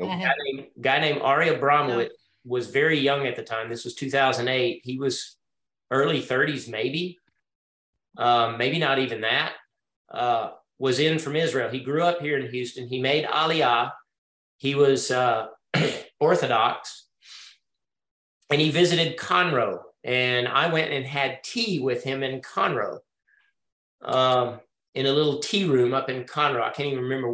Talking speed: 155 wpm